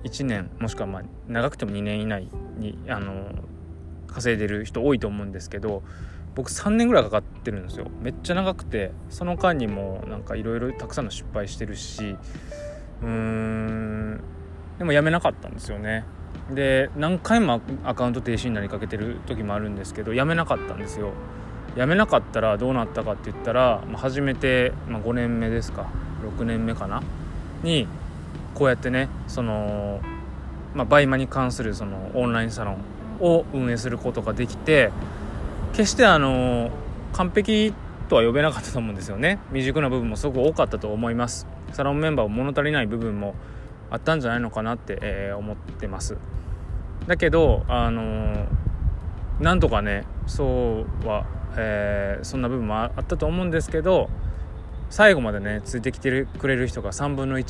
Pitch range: 95-125 Hz